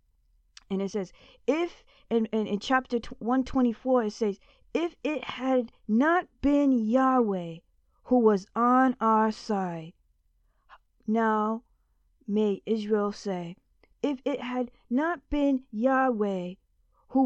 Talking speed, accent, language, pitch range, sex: 110 wpm, American, English, 195-255 Hz, female